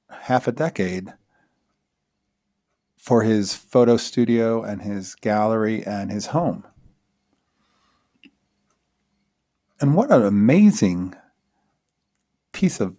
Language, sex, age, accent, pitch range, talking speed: English, male, 40-59, American, 100-125 Hz, 90 wpm